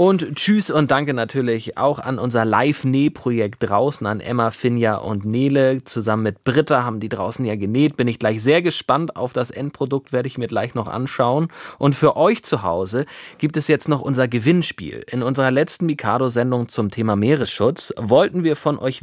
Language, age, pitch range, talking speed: German, 30-49, 110-150 Hz, 190 wpm